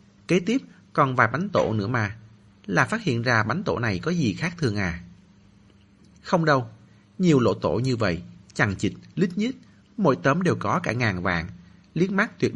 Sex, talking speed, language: male, 195 wpm, Vietnamese